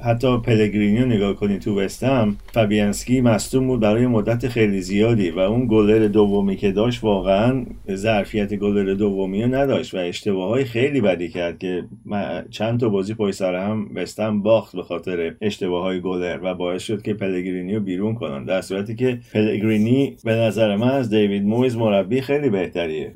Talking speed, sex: 165 wpm, male